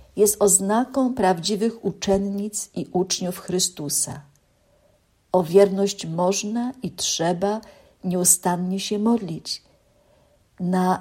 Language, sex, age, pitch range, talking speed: Polish, female, 50-69, 175-220 Hz, 85 wpm